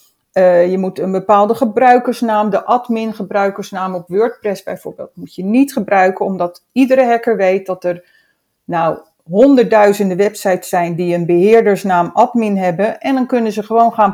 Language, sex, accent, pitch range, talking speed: Dutch, female, Dutch, 190-245 Hz, 155 wpm